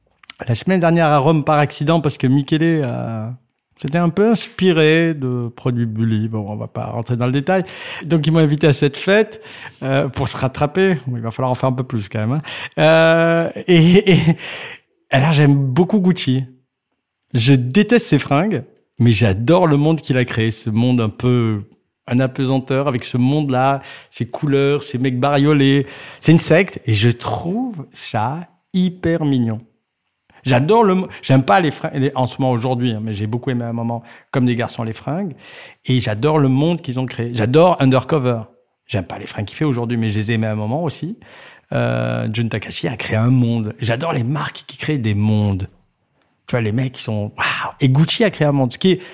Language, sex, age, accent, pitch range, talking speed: French, male, 50-69, French, 120-160 Hz, 205 wpm